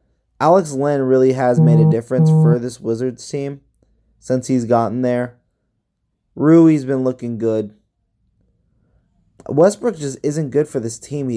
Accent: American